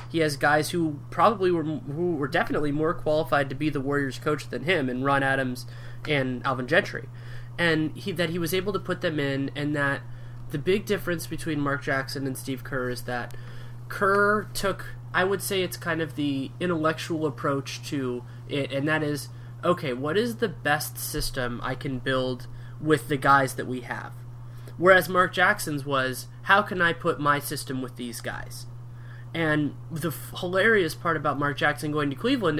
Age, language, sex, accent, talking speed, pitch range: 20-39, English, male, American, 185 wpm, 125-170 Hz